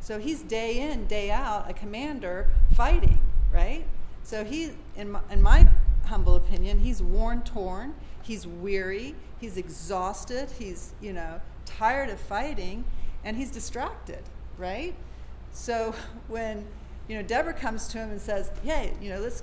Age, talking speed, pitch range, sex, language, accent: 50-69, 150 wpm, 185-255 Hz, female, English, American